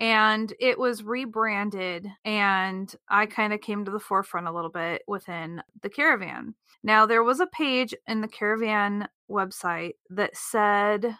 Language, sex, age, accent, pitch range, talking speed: English, female, 30-49, American, 185-230 Hz, 155 wpm